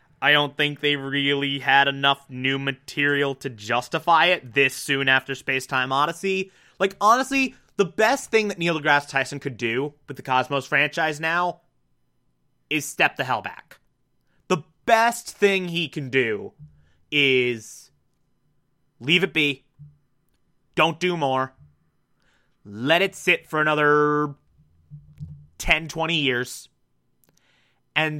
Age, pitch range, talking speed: 30-49, 130-155 Hz, 130 wpm